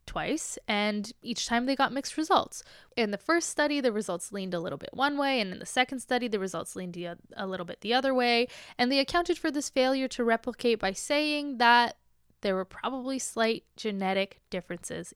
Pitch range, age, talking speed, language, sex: 200-265 Hz, 20-39, 200 wpm, English, female